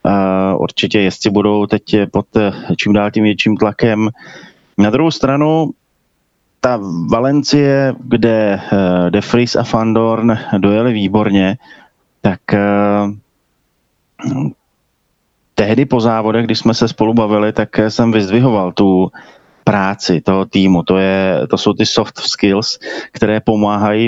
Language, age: Slovak, 30-49